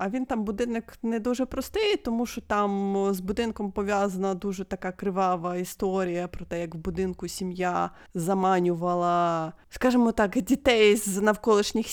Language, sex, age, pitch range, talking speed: Ukrainian, female, 20-39, 180-235 Hz, 145 wpm